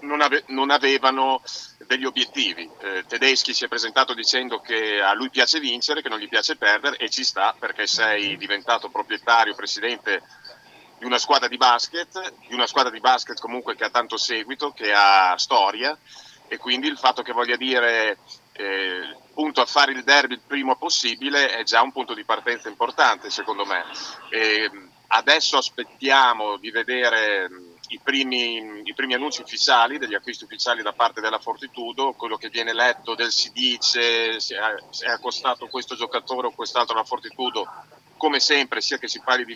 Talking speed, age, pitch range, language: 175 wpm, 40-59, 120-140 Hz, Italian